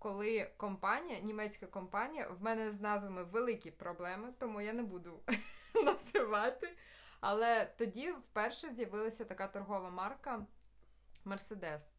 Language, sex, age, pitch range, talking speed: Ukrainian, female, 20-39, 195-235 Hz, 115 wpm